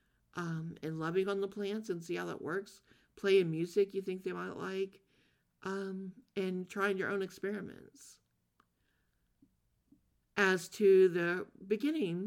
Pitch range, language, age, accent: 150-190 Hz, English, 50-69, American